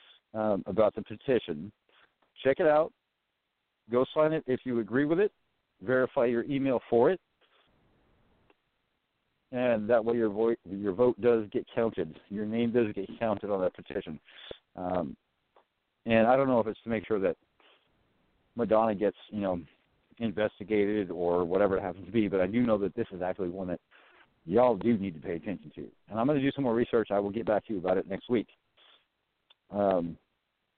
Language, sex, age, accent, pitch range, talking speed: English, male, 50-69, American, 100-125 Hz, 185 wpm